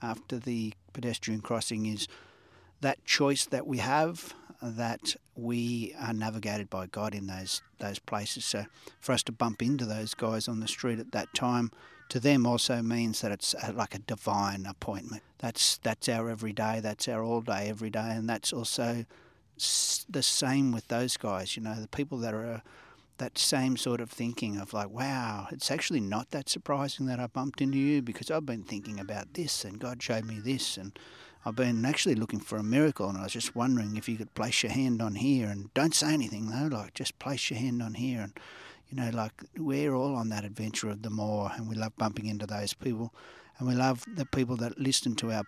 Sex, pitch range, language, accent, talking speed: male, 110-125 Hz, English, Australian, 210 wpm